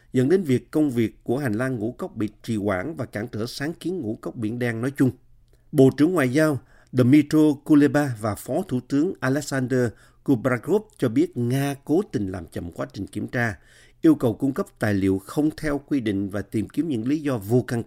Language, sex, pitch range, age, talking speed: Vietnamese, male, 110-140 Hz, 50-69, 220 wpm